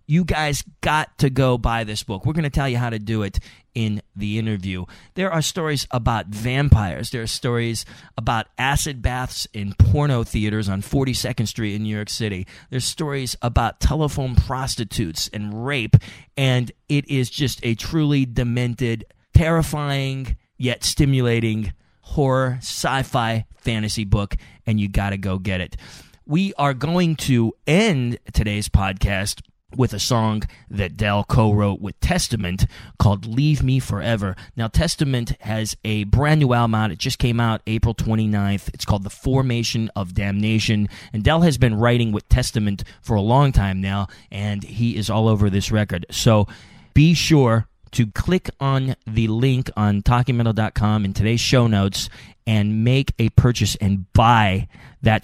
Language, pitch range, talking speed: English, 105-130 Hz, 160 wpm